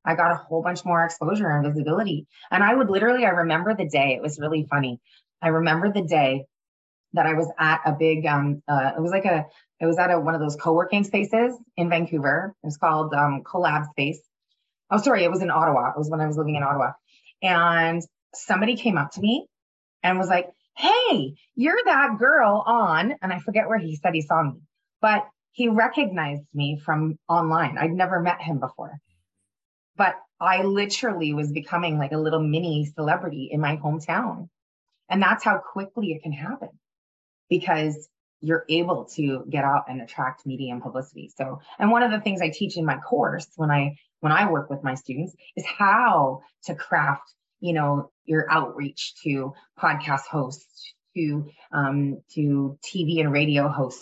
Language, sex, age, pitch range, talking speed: English, female, 20-39, 145-185 Hz, 190 wpm